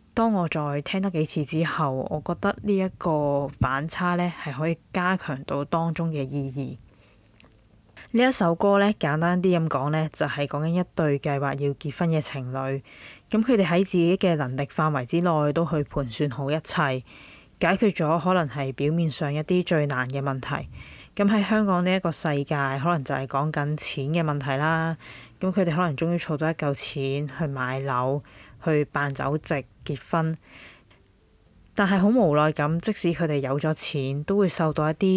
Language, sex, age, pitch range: Chinese, female, 20-39, 140-175 Hz